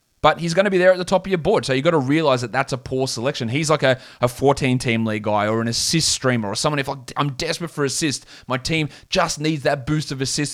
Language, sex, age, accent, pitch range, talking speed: English, male, 20-39, Australian, 115-150 Hz, 275 wpm